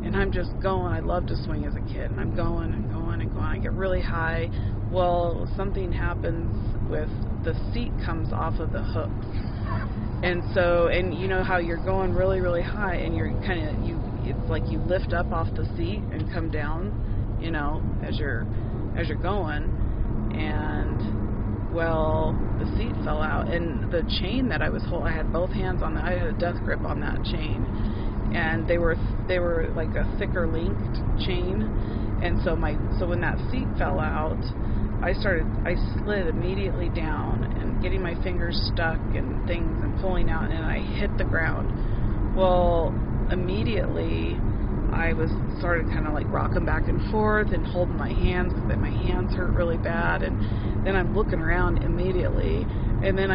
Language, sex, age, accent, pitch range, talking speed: English, female, 30-49, American, 105-110 Hz, 185 wpm